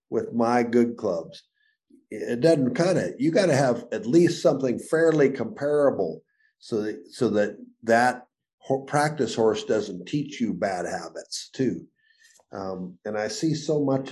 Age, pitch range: 50-69, 100-140 Hz